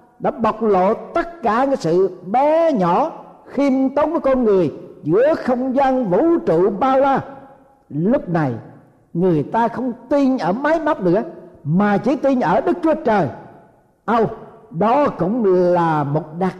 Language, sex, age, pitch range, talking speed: Vietnamese, male, 50-69, 175-260 Hz, 165 wpm